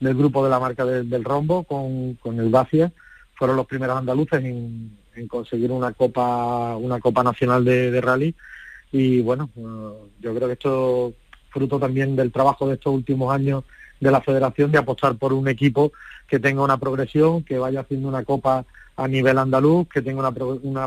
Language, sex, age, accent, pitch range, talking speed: Spanish, male, 40-59, Spanish, 125-135 Hz, 190 wpm